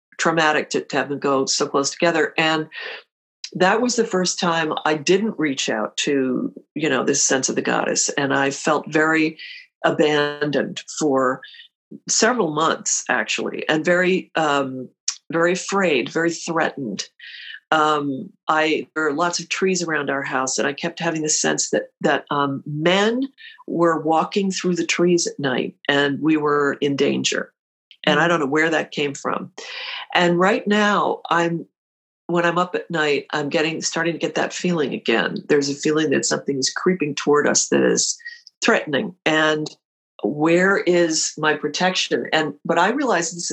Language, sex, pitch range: English, female, 145-180 Hz